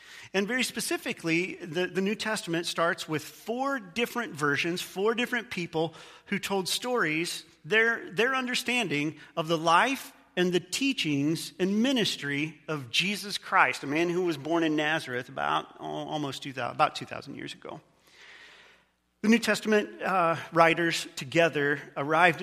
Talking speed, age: 145 wpm, 40-59